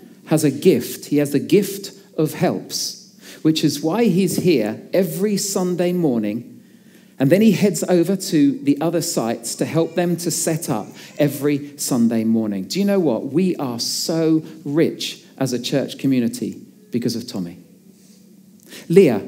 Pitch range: 140-195 Hz